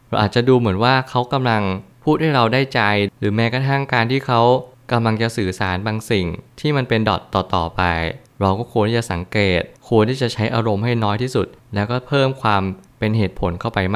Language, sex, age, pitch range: Thai, male, 20-39, 100-120 Hz